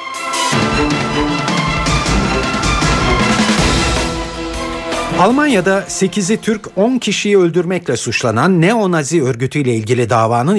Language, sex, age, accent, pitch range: Turkish, male, 50-69, native, 115-170 Hz